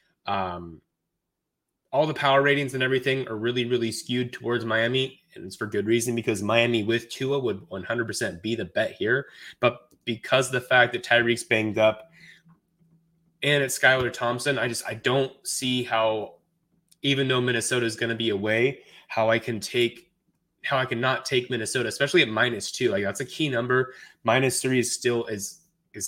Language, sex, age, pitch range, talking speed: English, male, 20-39, 110-135 Hz, 180 wpm